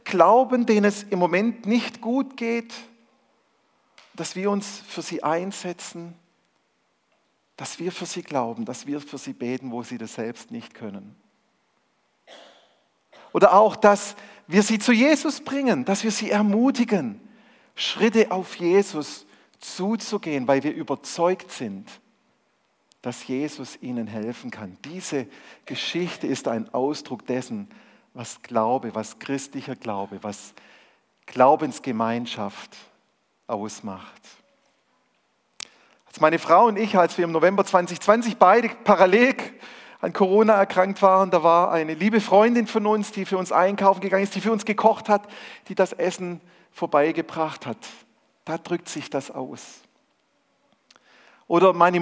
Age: 50-69